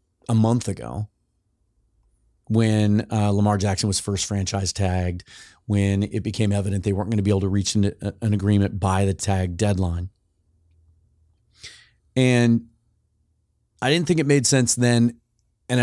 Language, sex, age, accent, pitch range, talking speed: English, male, 30-49, American, 95-120 Hz, 150 wpm